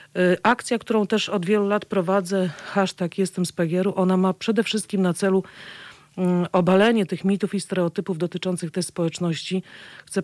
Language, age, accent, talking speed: Polish, 40-59, native, 145 wpm